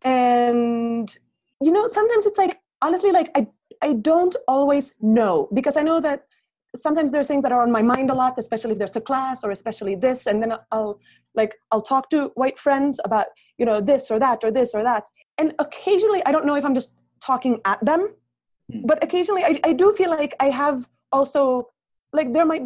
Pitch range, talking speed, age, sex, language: 220-280 Hz, 205 wpm, 30-49, female, English